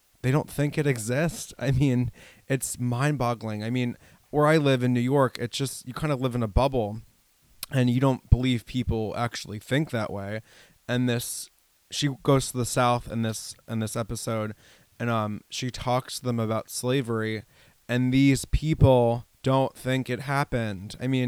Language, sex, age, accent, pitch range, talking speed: English, male, 20-39, American, 115-135 Hz, 185 wpm